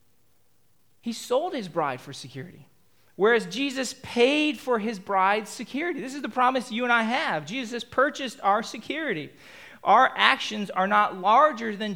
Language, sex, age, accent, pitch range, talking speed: English, male, 40-59, American, 190-255 Hz, 160 wpm